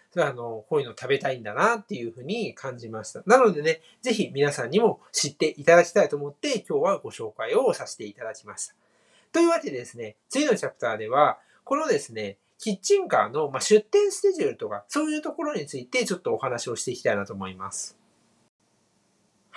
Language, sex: Japanese, male